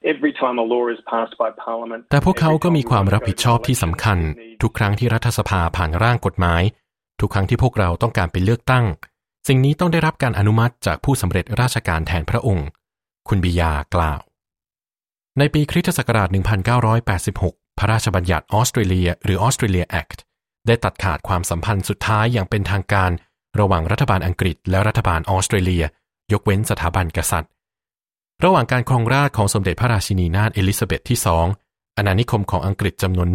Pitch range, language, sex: 90-120 Hz, Thai, male